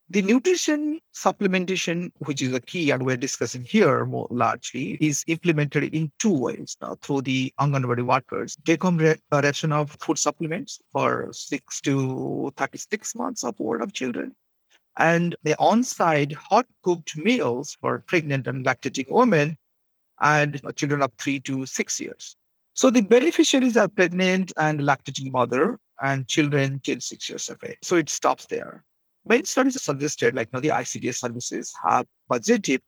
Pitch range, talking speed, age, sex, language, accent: 135-185 Hz, 160 wpm, 50-69, male, English, Indian